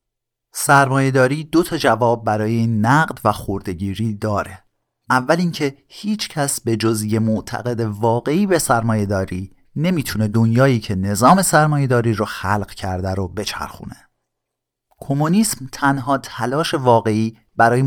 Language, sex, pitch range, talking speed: Persian, male, 105-145 Hz, 110 wpm